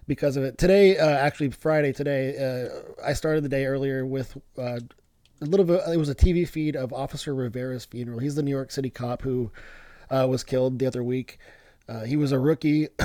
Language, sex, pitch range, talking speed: English, male, 130-155 Hz, 210 wpm